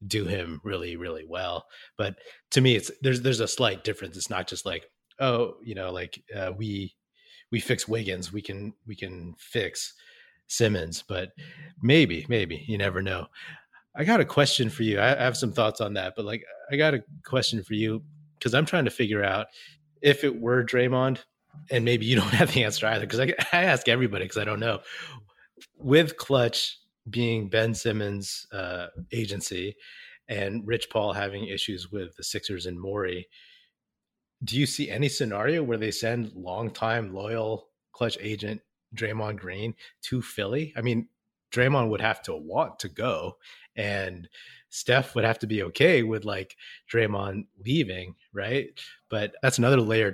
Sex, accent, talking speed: male, American, 175 wpm